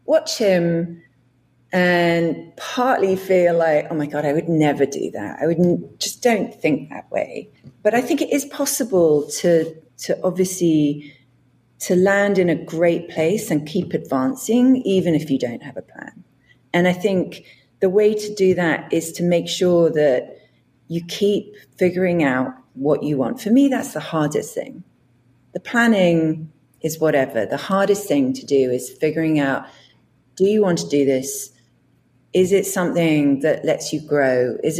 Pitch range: 140-185 Hz